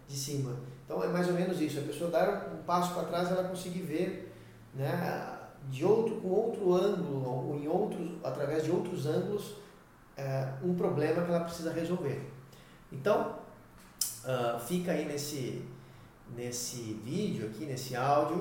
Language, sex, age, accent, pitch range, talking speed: Portuguese, male, 40-59, Brazilian, 135-175 Hz, 155 wpm